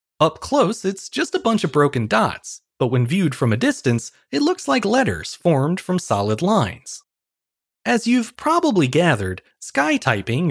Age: 30-49